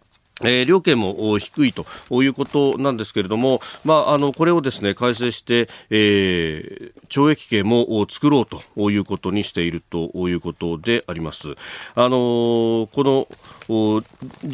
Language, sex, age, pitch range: Japanese, male, 40-59, 105-150 Hz